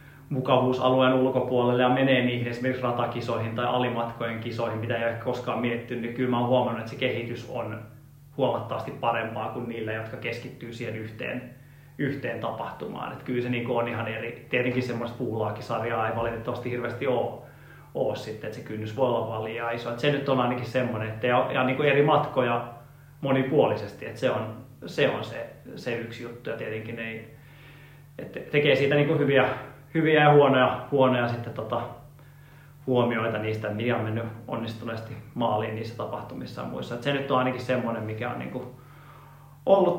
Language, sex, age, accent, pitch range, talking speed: Finnish, male, 30-49, native, 115-140 Hz, 165 wpm